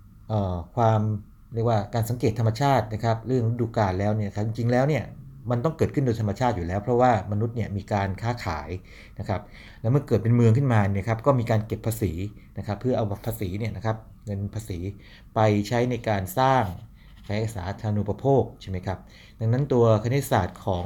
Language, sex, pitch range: Thai, male, 100-115 Hz